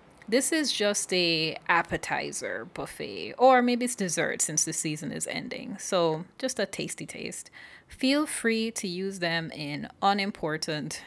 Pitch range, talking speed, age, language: 160-210 Hz, 145 wpm, 20-39, English